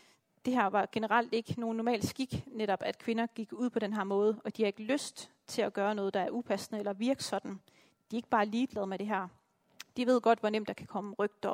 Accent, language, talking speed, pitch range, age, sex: native, Danish, 255 wpm, 205-245 Hz, 30-49, female